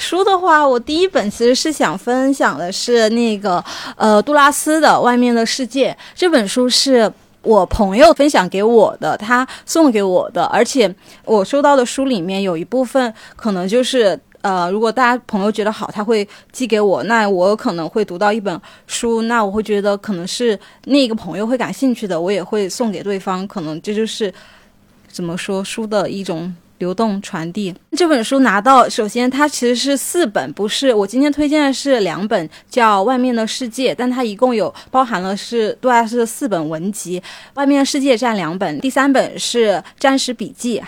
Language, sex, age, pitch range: Chinese, female, 20-39, 205-260 Hz